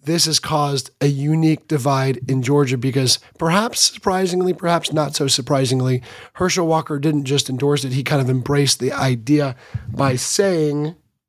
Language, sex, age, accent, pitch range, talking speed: English, male, 30-49, American, 130-155 Hz, 155 wpm